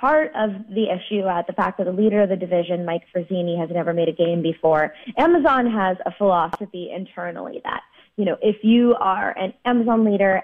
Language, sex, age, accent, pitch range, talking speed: English, female, 20-39, American, 175-225 Hz, 200 wpm